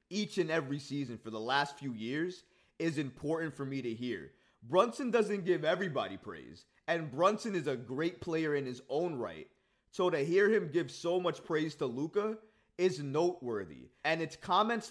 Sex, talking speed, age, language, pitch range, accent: male, 180 wpm, 20-39, English, 145-185 Hz, American